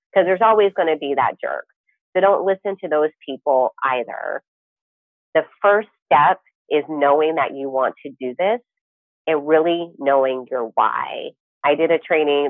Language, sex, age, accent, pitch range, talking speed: English, female, 30-49, American, 130-165 Hz, 170 wpm